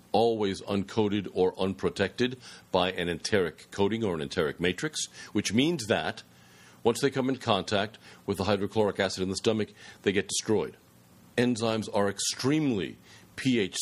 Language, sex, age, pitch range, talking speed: English, male, 50-69, 95-115 Hz, 150 wpm